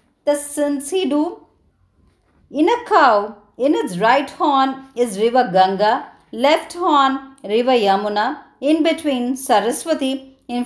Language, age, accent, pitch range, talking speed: Tamil, 50-69, native, 230-285 Hz, 115 wpm